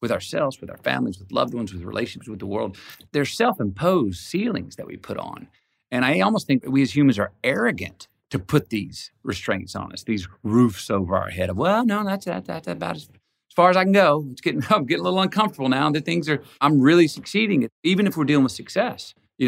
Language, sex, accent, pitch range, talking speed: English, male, American, 105-155 Hz, 235 wpm